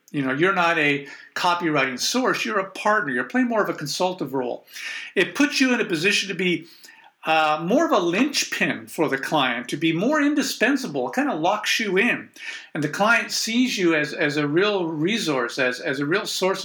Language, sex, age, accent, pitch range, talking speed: English, male, 50-69, American, 150-220 Hz, 210 wpm